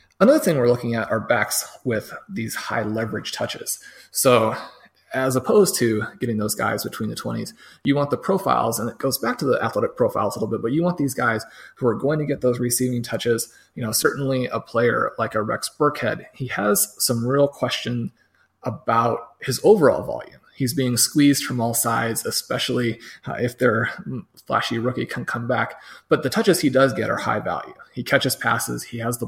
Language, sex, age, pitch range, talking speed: English, male, 30-49, 115-140 Hz, 200 wpm